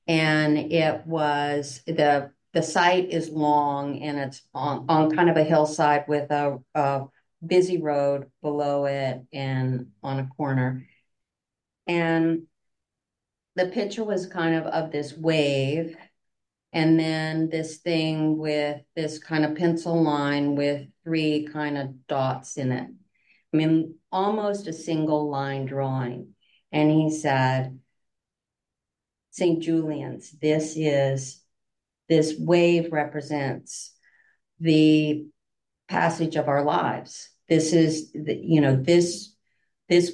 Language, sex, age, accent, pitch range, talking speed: English, female, 40-59, American, 140-165 Hz, 125 wpm